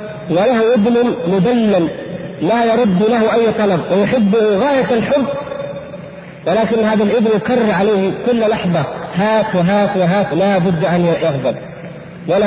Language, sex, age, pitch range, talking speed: Arabic, male, 50-69, 175-225 Hz, 125 wpm